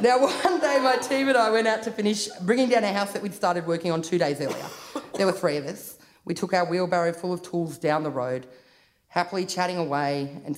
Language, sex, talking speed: English, female, 240 wpm